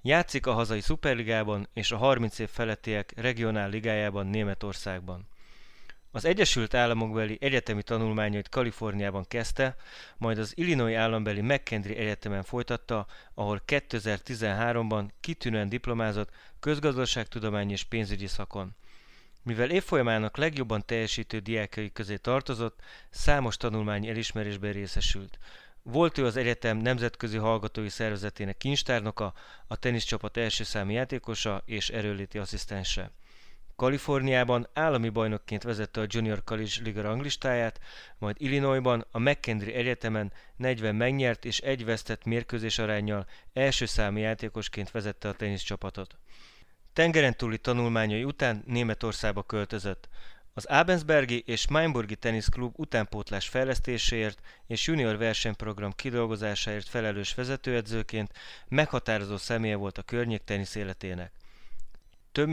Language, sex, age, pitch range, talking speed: Hungarian, male, 20-39, 105-120 Hz, 110 wpm